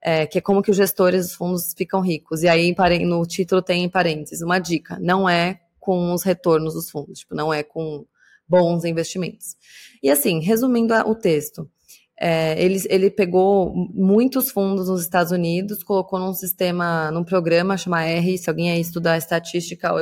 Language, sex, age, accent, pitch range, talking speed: Portuguese, female, 20-39, Brazilian, 175-195 Hz, 170 wpm